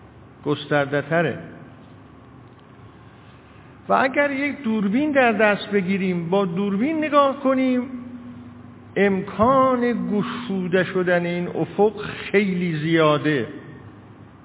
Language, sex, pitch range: Persian, male, 130-200 Hz